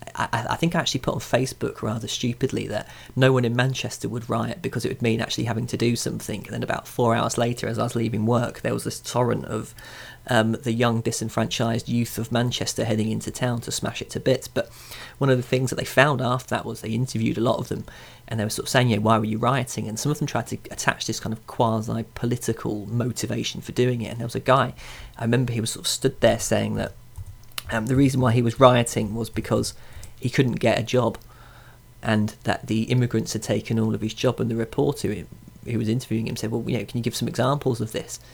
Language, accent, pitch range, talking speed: English, British, 110-125 Hz, 245 wpm